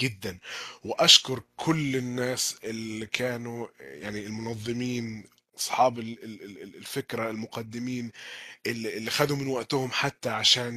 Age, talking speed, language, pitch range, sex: 20-39, 95 wpm, Arabic, 110-130 Hz, male